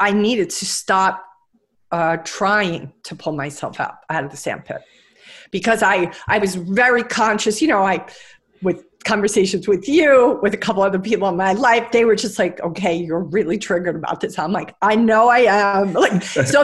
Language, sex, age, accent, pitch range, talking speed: English, female, 40-59, American, 185-225 Hz, 190 wpm